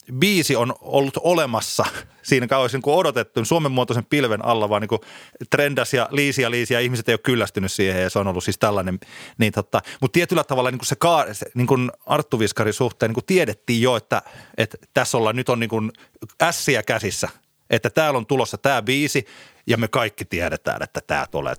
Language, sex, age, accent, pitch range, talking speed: Finnish, male, 30-49, native, 115-155 Hz, 155 wpm